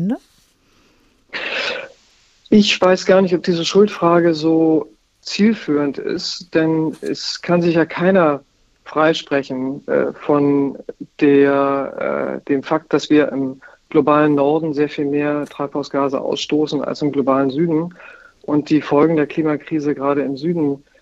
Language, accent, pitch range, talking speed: German, German, 145-175 Hz, 120 wpm